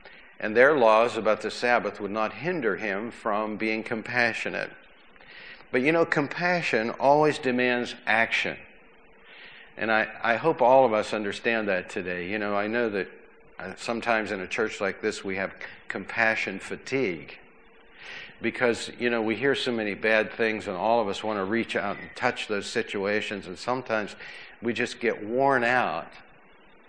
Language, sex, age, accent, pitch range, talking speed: English, male, 50-69, American, 100-125 Hz, 165 wpm